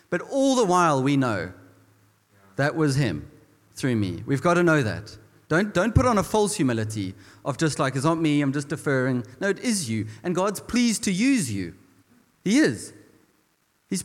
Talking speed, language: 190 wpm, English